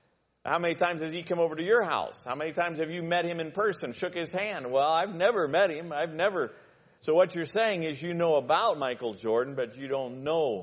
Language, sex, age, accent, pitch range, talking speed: English, male, 50-69, American, 135-180 Hz, 245 wpm